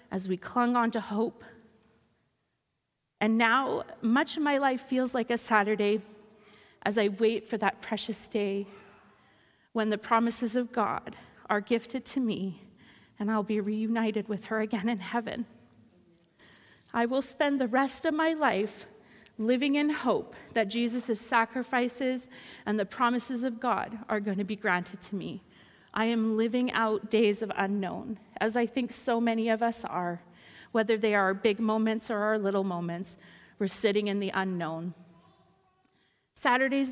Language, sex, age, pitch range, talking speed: English, female, 30-49, 210-245 Hz, 160 wpm